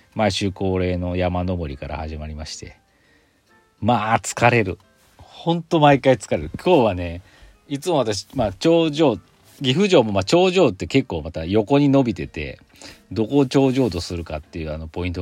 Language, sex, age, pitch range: Japanese, male, 40-59, 85-115 Hz